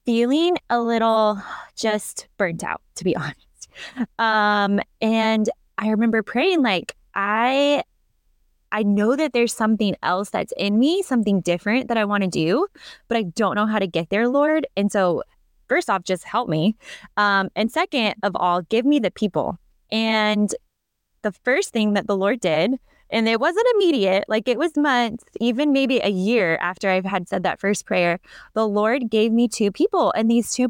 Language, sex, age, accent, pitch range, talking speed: English, female, 20-39, American, 200-240 Hz, 180 wpm